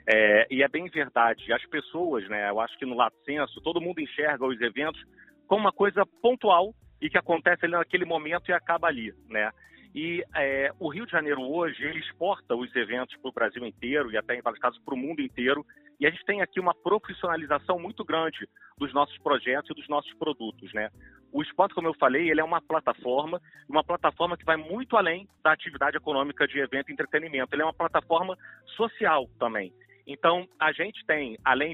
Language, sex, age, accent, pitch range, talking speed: Portuguese, male, 40-59, Brazilian, 130-170 Hz, 200 wpm